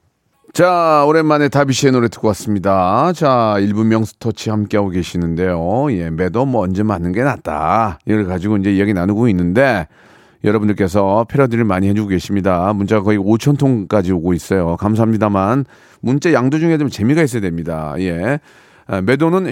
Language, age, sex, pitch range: Korean, 40-59, male, 105-160 Hz